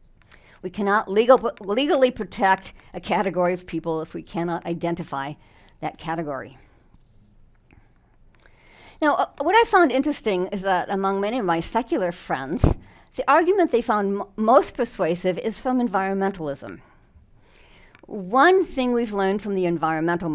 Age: 50-69